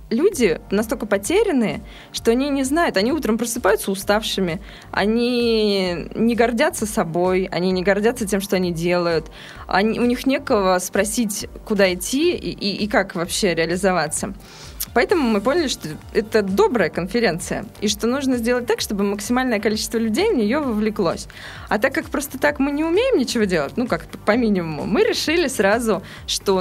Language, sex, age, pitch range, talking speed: Russian, female, 20-39, 185-235 Hz, 160 wpm